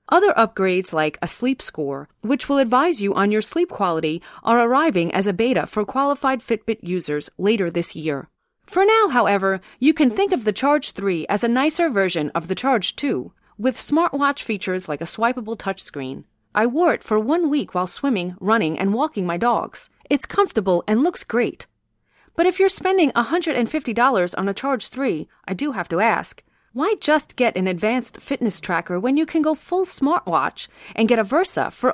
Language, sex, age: English, female, 40-59